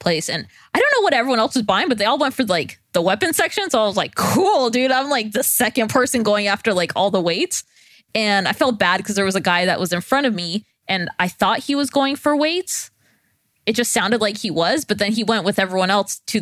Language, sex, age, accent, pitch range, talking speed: English, female, 20-39, American, 180-225 Hz, 265 wpm